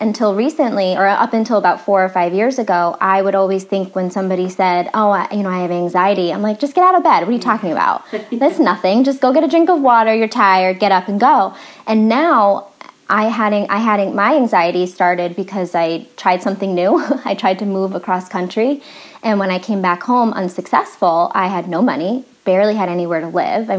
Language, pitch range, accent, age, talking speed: English, 185-235 Hz, American, 20-39, 225 wpm